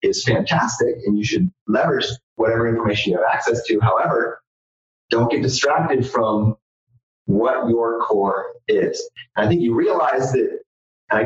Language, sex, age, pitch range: English, male, 30-49, 110-140 Hz